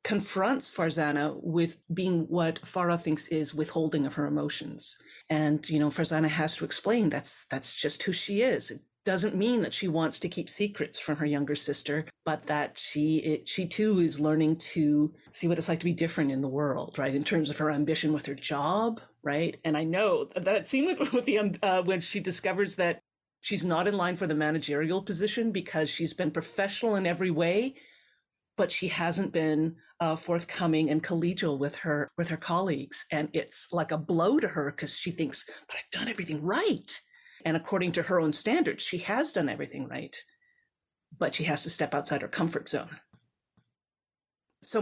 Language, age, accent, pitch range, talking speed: English, 30-49, American, 155-200 Hz, 190 wpm